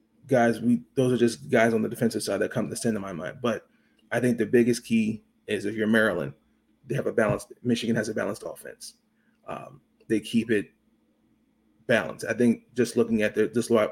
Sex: male